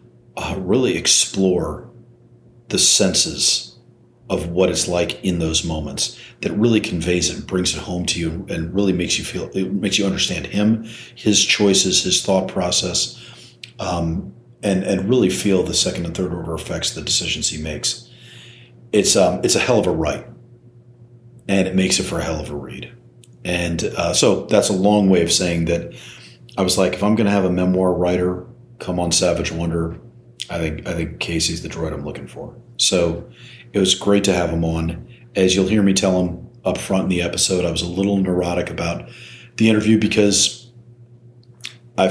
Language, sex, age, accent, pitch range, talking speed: English, male, 40-59, American, 85-110 Hz, 190 wpm